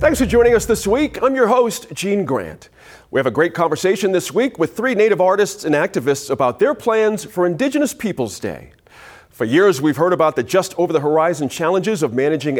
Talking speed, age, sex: 200 wpm, 40-59, male